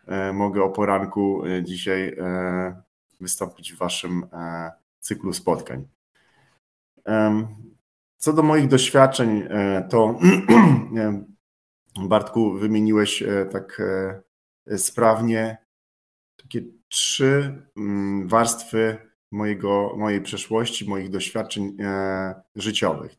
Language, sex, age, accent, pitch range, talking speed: Polish, male, 30-49, native, 100-115 Hz, 70 wpm